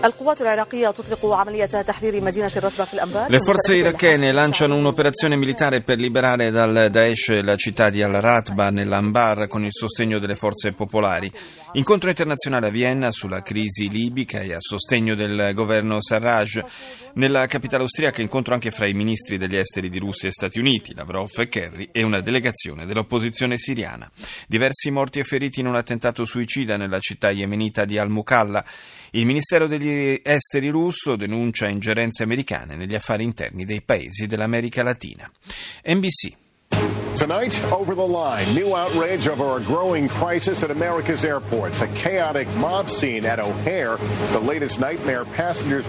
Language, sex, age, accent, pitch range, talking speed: Italian, male, 30-49, native, 110-150 Hz, 115 wpm